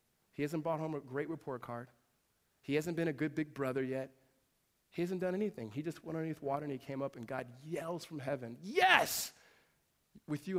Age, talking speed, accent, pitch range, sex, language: 40-59, 210 wpm, American, 120-170 Hz, male, English